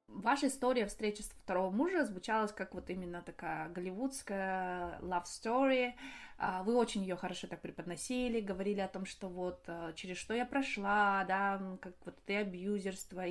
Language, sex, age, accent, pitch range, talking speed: Russian, female, 20-39, native, 185-230 Hz, 155 wpm